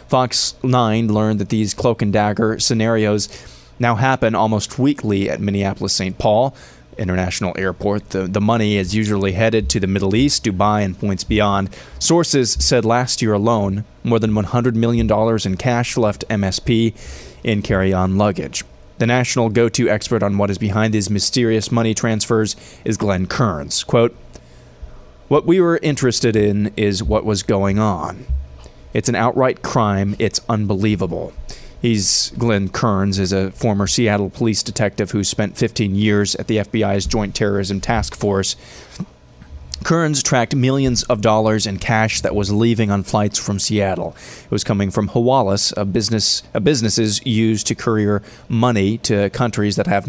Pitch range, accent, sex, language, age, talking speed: 100-115 Hz, American, male, English, 20-39, 155 wpm